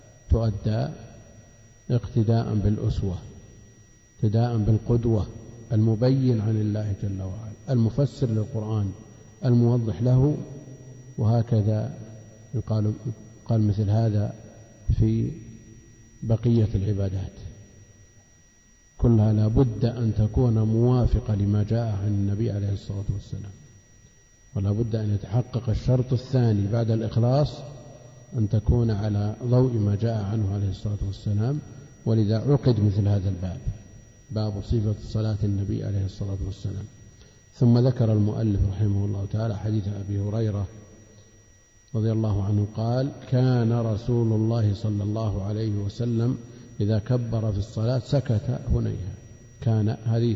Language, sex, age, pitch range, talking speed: Arabic, male, 50-69, 105-115 Hz, 110 wpm